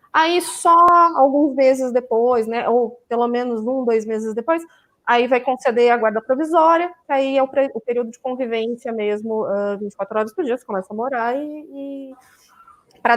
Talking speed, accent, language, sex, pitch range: 185 wpm, Brazilian, Portuguese, female, 215-275 Hz